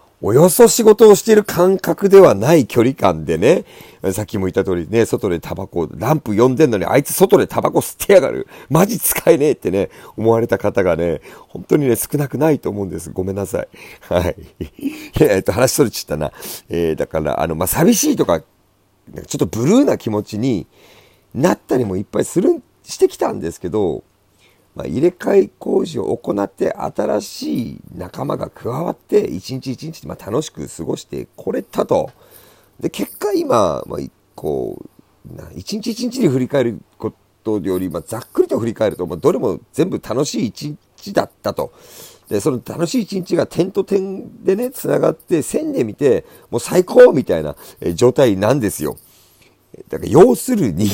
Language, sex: Japanese, male